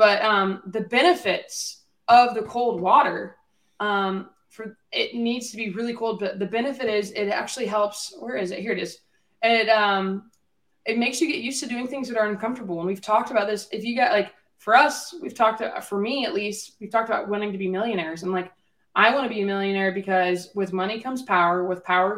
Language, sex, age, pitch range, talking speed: English, female, 20-39, 185-225 Hz, 220 wpm